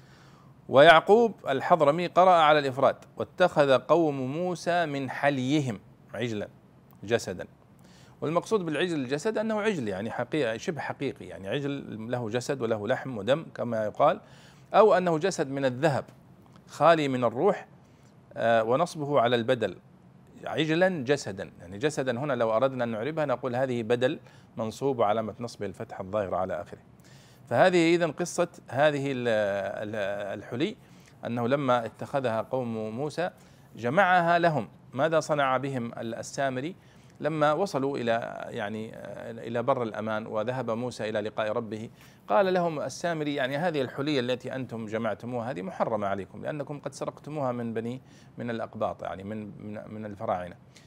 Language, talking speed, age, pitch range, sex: Arabic, 130 wpm, 40-59, 115-155 Hz, male